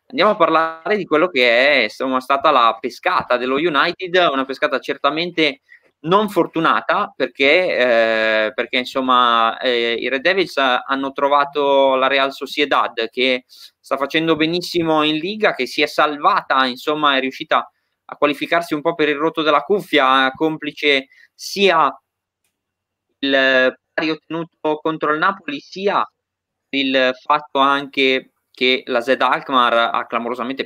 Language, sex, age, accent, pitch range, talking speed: Italian, male, 20-39, native, 125-155 Hz, 140 wpm